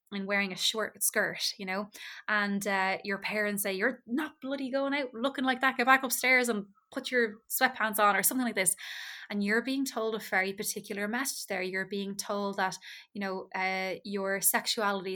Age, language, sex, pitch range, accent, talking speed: 20-39, English, female, 190-215 Hz, Irish, 200 wpm